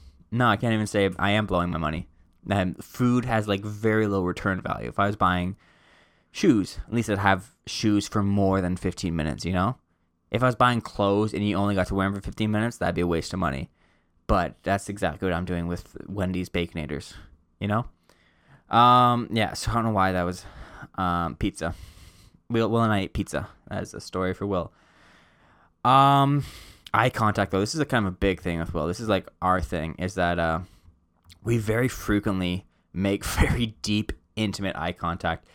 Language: English